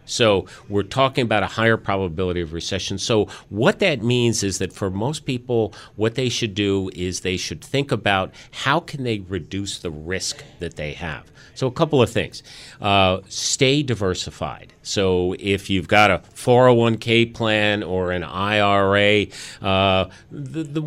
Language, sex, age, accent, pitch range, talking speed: English, male, 40-59, American, 95-120 Hz, 165 wpm